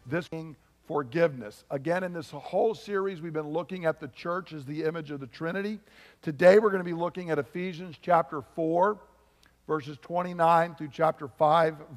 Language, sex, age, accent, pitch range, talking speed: English, male, 50-69, American, 140-175 Hz, 175 wpm